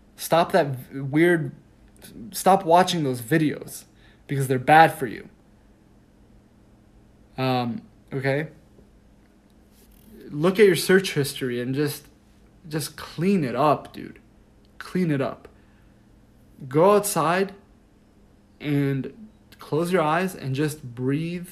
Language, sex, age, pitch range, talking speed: English, male, 20-39, 110-160 Hz, 105 wpm